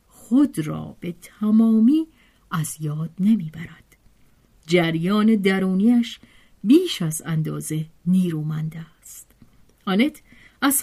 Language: Persian